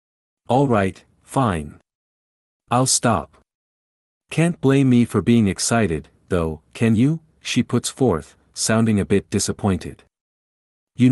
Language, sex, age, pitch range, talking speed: English, male, 50-69, 80-125 Hz, 115 wpm